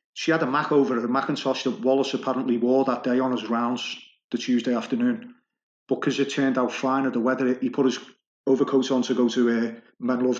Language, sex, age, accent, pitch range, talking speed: English, male, 40-59, British, 125-150 Hz, 220 wpm